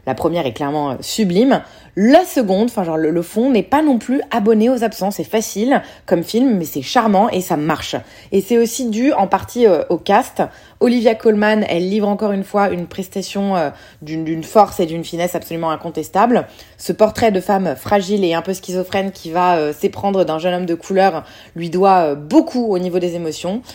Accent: French